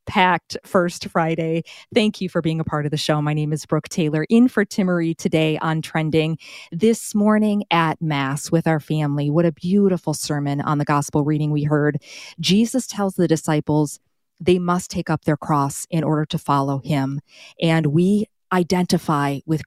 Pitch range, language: 150-175 Hz, English